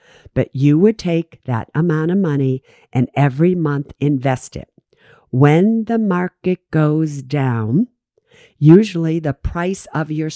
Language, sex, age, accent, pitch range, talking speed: English, female, 50-69, American, 130-165 Hz, 135 wpm